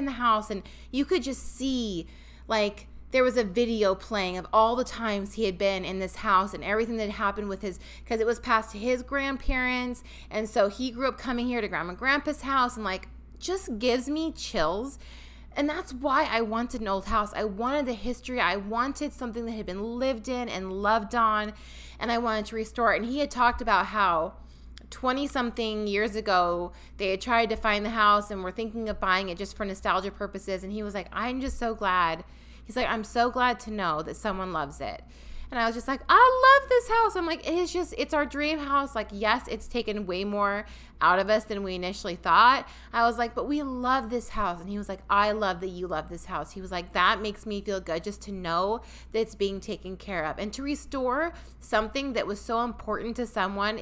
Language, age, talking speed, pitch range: English, 30-49, 230 wpm, 205-255 Hz